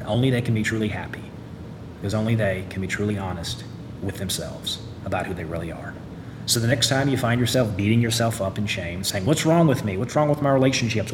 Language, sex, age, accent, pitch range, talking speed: English, male, 30-49, American, 100-125 Hz, 225 wpm